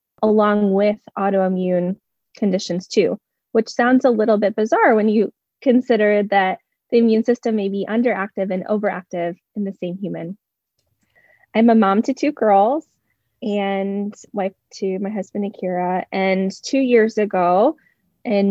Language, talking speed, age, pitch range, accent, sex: English, 145 wpm, 20-39, 195-240 Hz, American, female